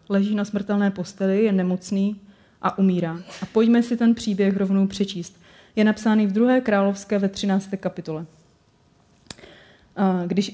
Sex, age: female, 30-49